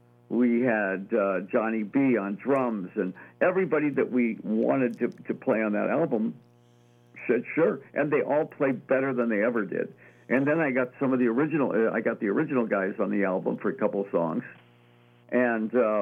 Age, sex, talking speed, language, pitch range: 60-79, male, 195 wpm, English, 85-125 Hz